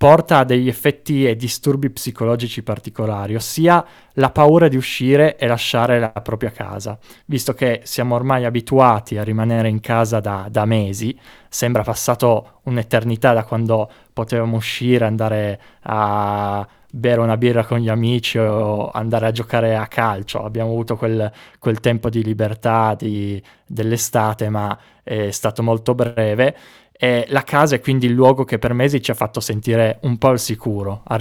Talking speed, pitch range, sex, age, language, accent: 160 wpm, 110-125 Hz, male, 20-39, Italian, native